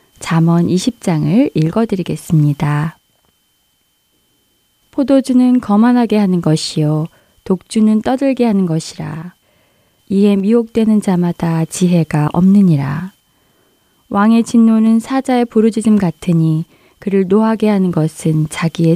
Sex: female